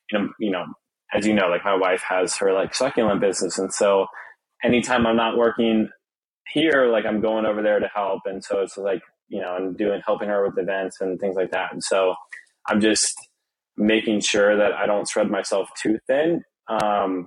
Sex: male